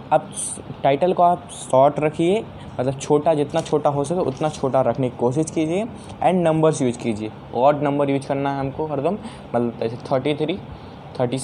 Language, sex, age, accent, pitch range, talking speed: Hindi, male, 10-29, native, 130-160 Hz, 185 wpm